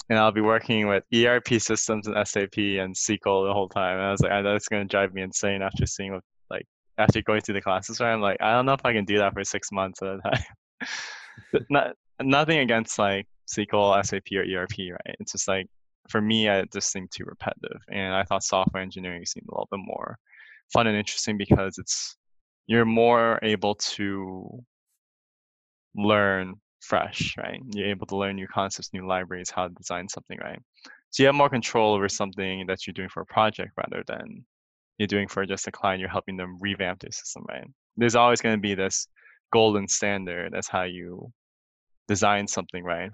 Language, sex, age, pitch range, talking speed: English, male, 10-29, 95-110 Hz, 200 wpm